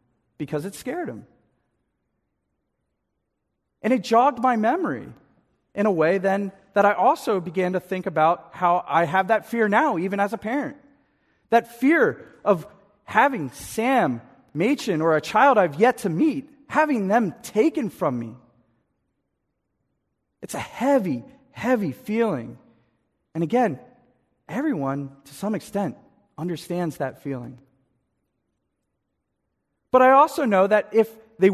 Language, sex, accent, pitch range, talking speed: English, male, American, 175-255 Hz, 130 wpm